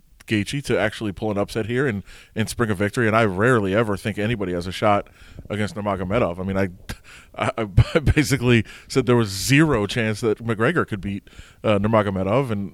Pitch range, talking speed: 100-120 Hz, 195 wpm